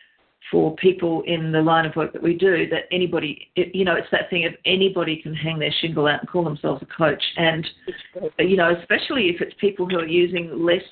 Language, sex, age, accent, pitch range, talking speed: English, female, 50-69, Australian, 160-190 Hz, 220 wpm